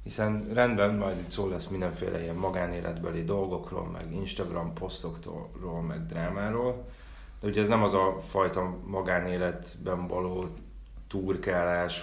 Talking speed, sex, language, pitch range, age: 125 wpm, male, Hungarian, 85-95 Hz, 30-49